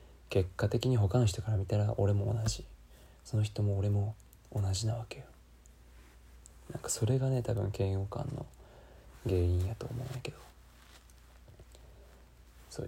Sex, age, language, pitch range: male, 20-39, Japanese, 90-120 Hz